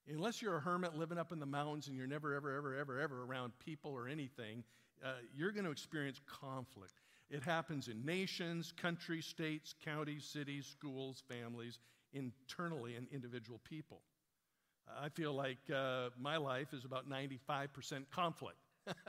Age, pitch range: 50-69, 130-165 Hz